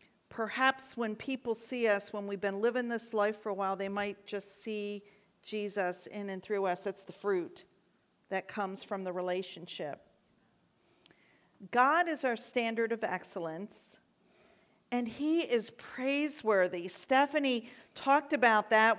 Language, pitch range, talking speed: English, 215-285 Hz, 140 wpm